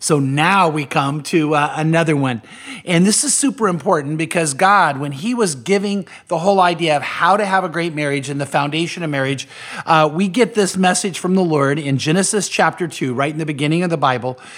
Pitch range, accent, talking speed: 145-190 Hz, American, 220 wpm